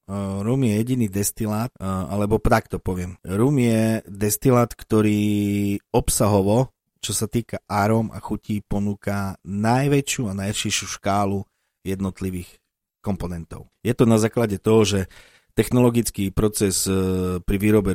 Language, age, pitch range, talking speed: Slovak, 40-59, 95-110 Hz, 115 wpm